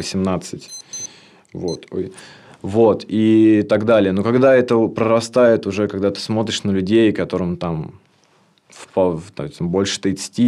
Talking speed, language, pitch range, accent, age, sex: 115 wpm, Russian, 95-110 Hz, native, 20-39, male